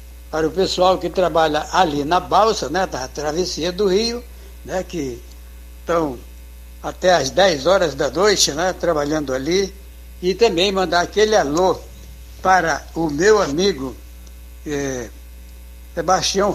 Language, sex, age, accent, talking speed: Portuguese, male, 60-79, Brazilian, 130 wpm